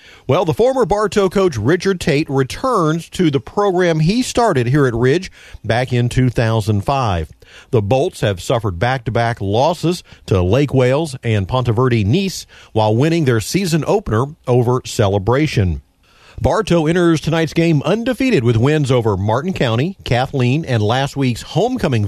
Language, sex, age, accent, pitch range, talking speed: English, male, 50-69, American, 110-160 Hz, 145 wpm